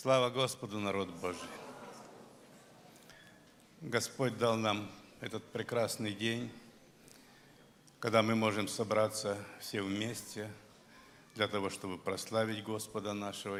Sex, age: male, 60-79